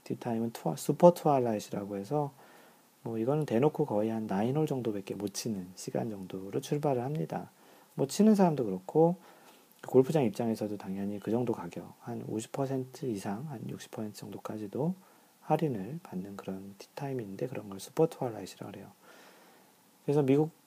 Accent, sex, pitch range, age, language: native, male, 105-150 Hz, 40-59, Korean